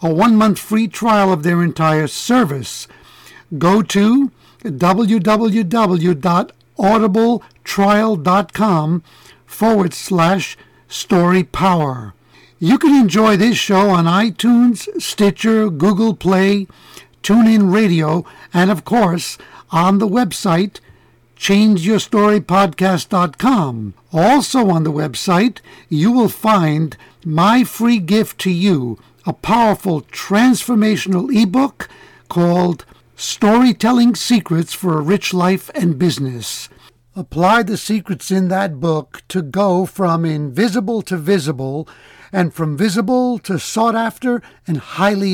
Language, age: English, 60-79